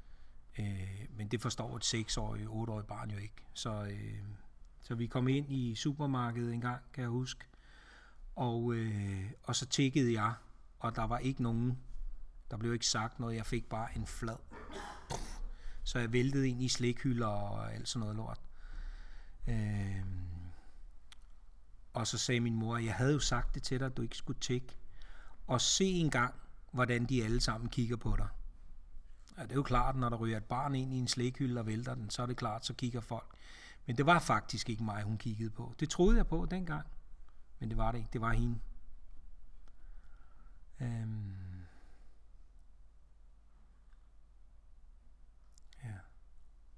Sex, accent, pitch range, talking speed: male, native, 80-120 Hz, 165 wpm